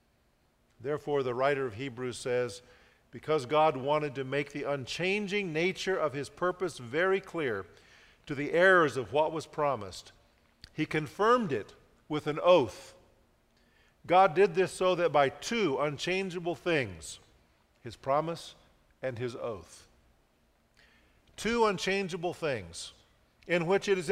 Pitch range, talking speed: 130-190 Hz, 130 wpm